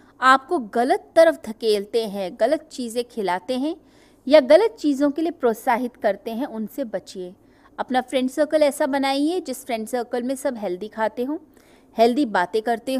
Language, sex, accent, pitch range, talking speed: Hindi, female, native, 220-295 Hz, 160 wpm